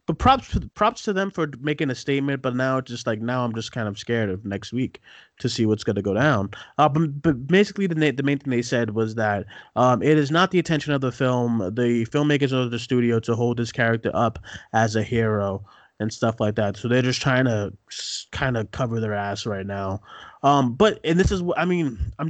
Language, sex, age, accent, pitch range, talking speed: English, male, 20-39, American, 115-150 Hz, 240 wpm